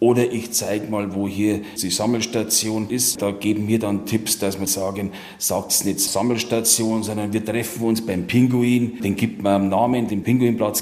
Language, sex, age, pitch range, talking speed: German, male, 40-59, 100-115 Hz, 190 wpm